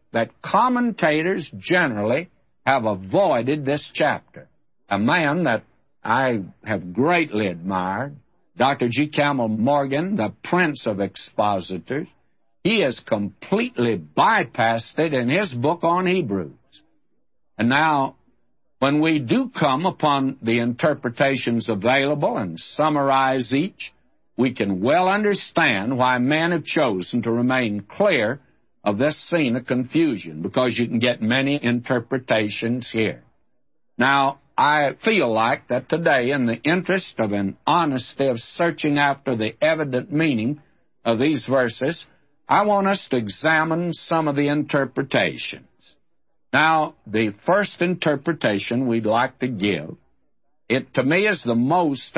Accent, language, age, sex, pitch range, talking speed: American, English, 60-79, male, 120-160 Hz, 130 wpm